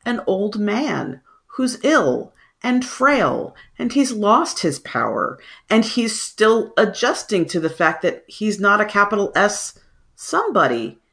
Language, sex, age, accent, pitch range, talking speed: English, female, 40-59, American, 150-215 Hz, 140 wpm